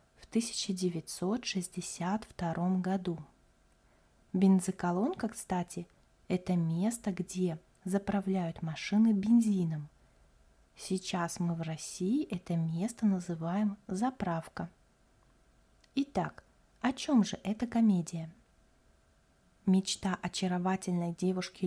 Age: 30-49